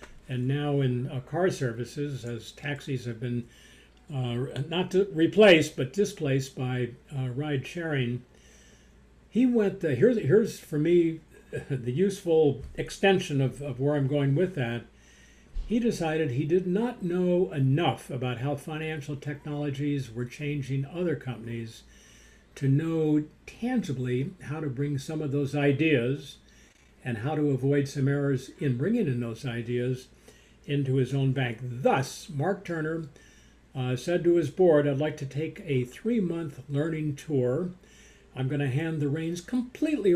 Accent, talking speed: American, 150 wpm